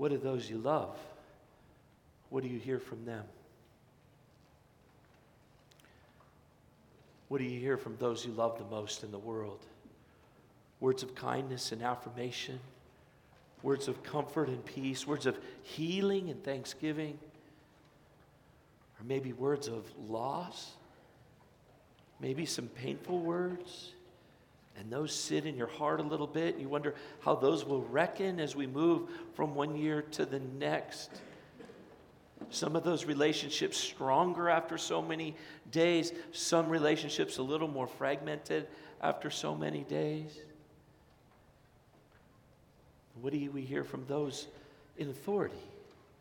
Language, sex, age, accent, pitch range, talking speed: English, male, 50-69, American, 130-155 Hz, 130 wpm